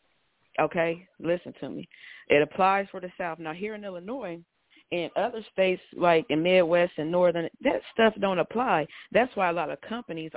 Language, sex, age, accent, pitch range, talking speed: English, female, 40-59, American, 165-205 Hz, 180 wpm